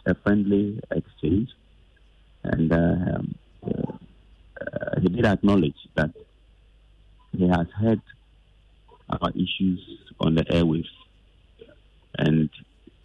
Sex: male